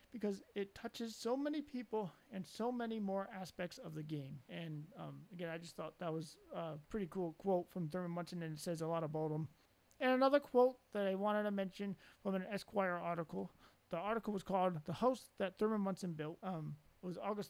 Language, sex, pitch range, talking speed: English, male, 165-215 Hz, 215 wpm